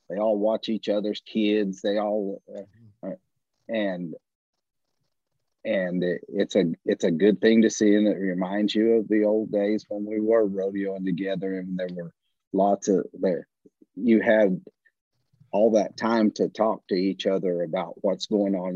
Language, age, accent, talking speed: English, 40-59, American, 170 wpm